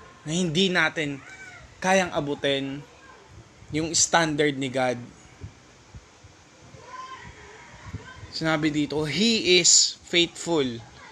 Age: 20-39